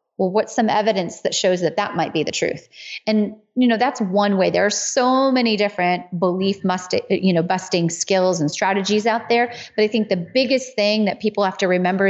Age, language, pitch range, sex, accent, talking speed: 30-49, English, 190-245 Hz, female, American, 220 wpm